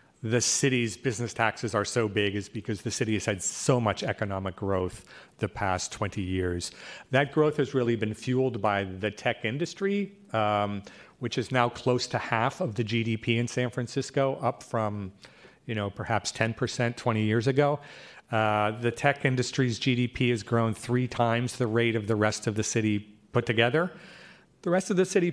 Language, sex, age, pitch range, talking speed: English, male, 40-59, 105-130 Hz, 180 wpm